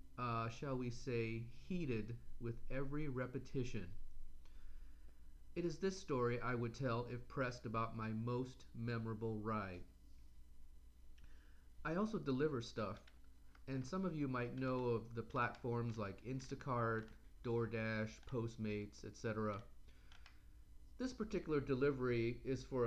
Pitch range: 105-130 Hz